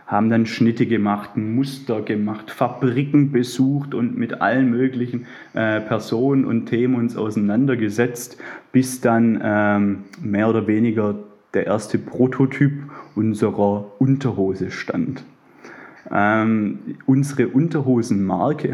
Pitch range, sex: 110-130 Hz, male